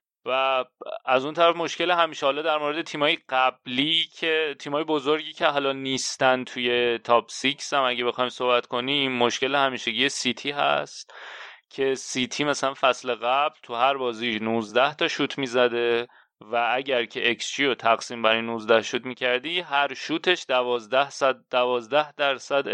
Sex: male